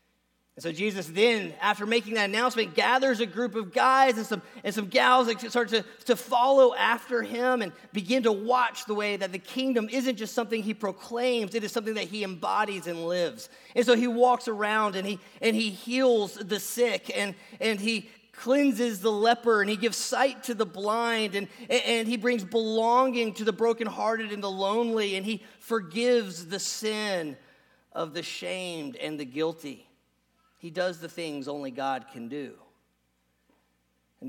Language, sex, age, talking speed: English, male, 40-59, 180 wpm